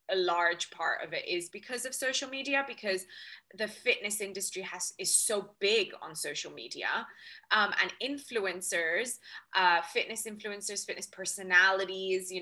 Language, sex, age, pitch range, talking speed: English, female, 20-39, 190-275 Hz, 145 wpm